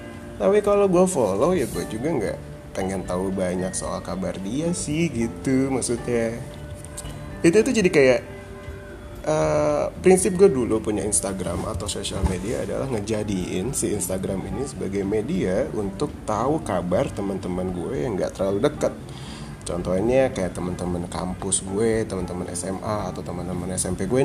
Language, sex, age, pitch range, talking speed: Indonesian, male, 20-39, 95-150 Hz, 140 wpm